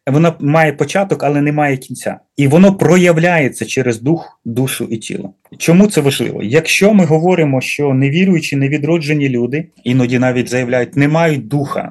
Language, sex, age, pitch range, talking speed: Ukrainian, male, 30-49, 125-155 Hz, 155 wpm